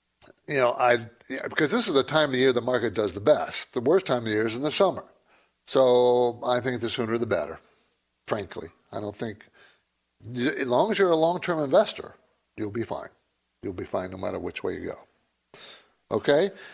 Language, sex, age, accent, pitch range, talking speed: English, male, 60-79, American, 120-155 Hz, 195 wpm